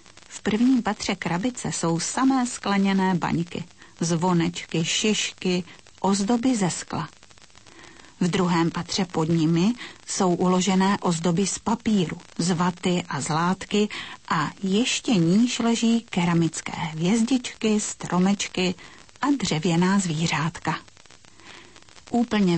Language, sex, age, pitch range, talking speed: Slovak, female, 40-59, 175-215 Hz, 100 wpm